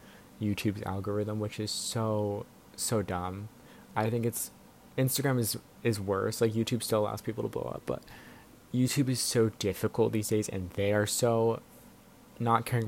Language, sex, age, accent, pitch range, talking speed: English, male, 20-39, American, 105-125 Hz, 165 wpm